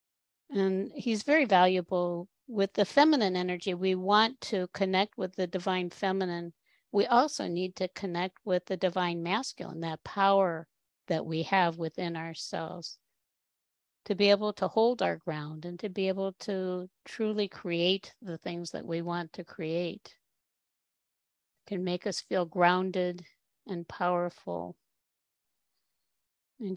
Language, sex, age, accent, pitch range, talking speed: English, female, 50-69, American, 180-210 Hz, 135 wpm